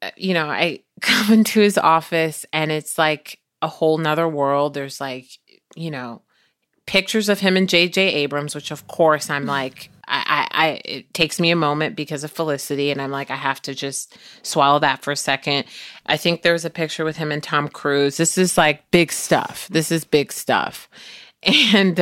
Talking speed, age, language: 195 wpm, 30-49, English